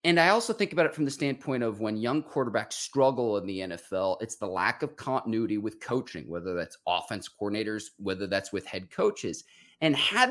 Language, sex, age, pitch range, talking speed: English, male, 30-49, 105-150 Hz, 205 wpm